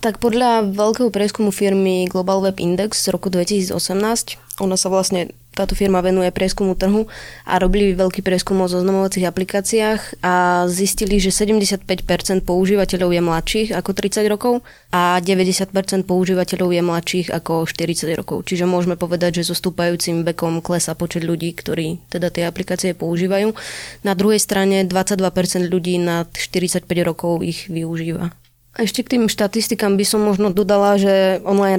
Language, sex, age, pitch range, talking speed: Slovak, female, 20-39, 175-195 Hz, 145 wpm